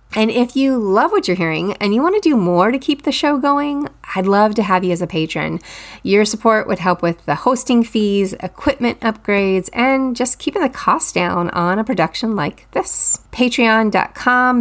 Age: 30-49